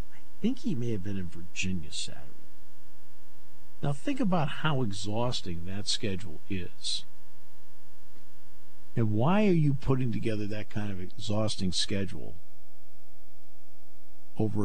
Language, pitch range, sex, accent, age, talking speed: English, 75-115 Hz, male, American, 50-69, 120 wpm